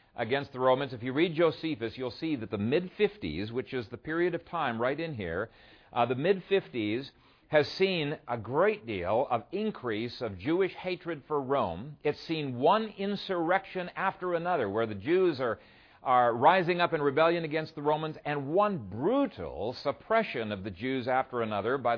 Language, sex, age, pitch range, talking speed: English, male, 50-69, 120-180 Hz, 180 wpm